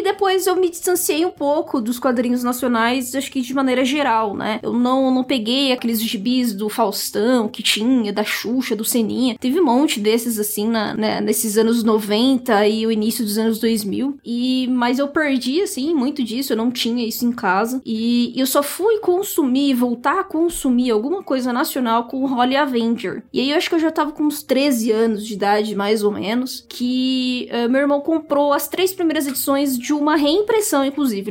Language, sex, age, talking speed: Portuguese, female, 10-29, 190 wpm